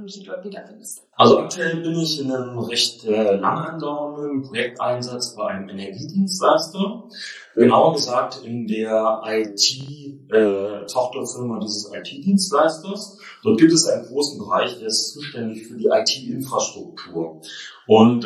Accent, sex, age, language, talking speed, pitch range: German, male, 30-49, German, 115 wpm, 110-160 Hz